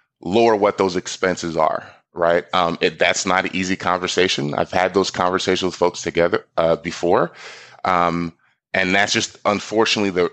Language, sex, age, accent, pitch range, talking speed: English, male, 20-39, American, 90-110 Hz, 155 wpm